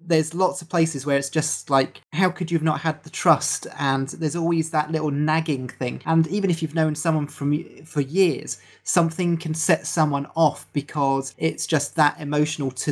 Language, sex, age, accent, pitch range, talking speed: English, male, 20-39, British, 135-160 Hz, 200 wpm